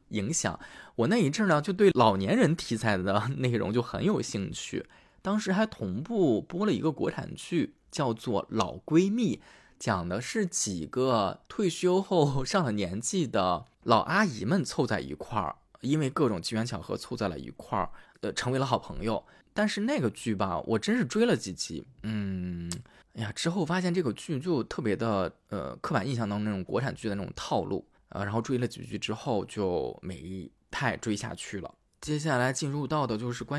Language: Chinese